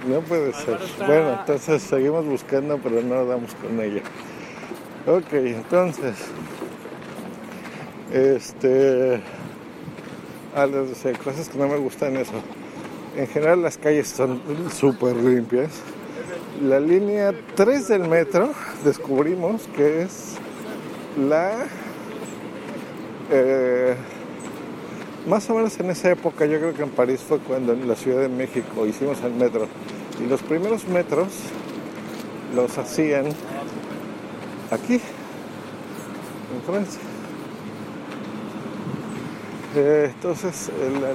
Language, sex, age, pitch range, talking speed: Spanish, male, 50-69, 125-165 Hz, 105 wpm